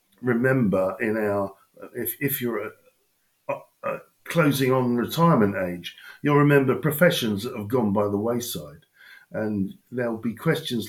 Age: 50-69